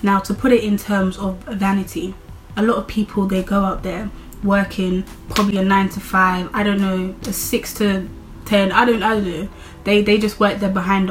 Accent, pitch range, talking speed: British, 185-210 Hz, 215 wpm